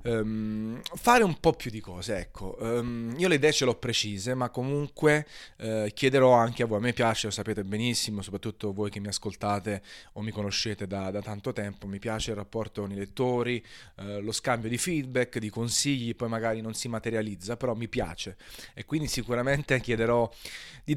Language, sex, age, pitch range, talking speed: Italian, male, 30-49, 105-125 Hz, 195 wpm